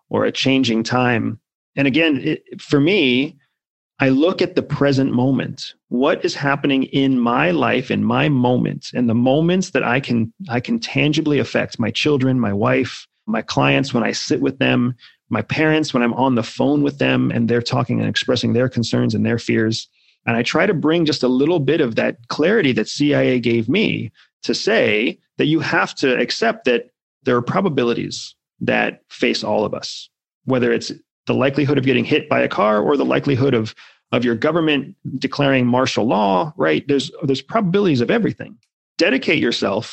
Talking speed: 185 wpm